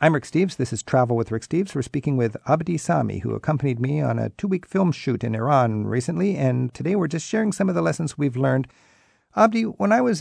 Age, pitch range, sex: 50-69, 110-145 Hz, male